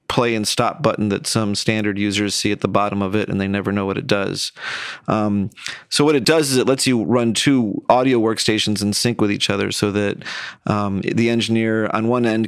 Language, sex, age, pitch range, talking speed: English, male, 40-59, 105-115 Hz, 225 wpm